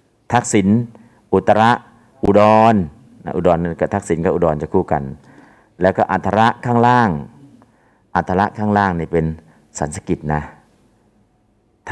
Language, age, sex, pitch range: Thai, 50-69, male, 85-105 Hz